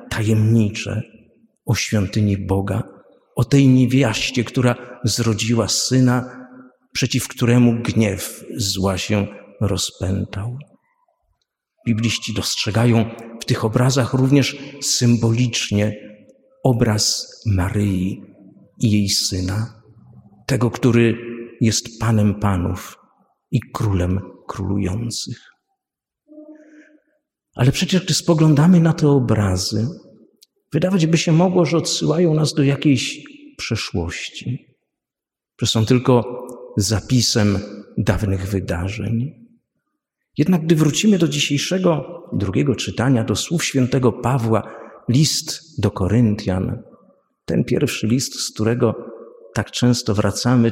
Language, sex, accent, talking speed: Polish, male, native, 95 wpm